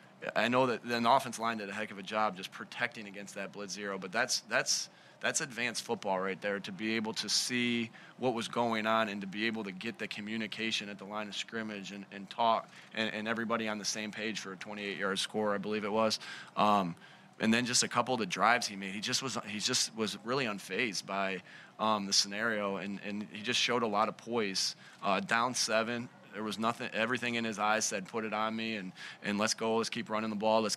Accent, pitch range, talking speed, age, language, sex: American, 105-115 Hz, 240 wpm, 20-39, English, male